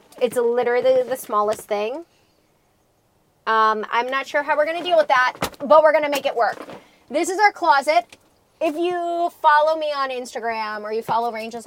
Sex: female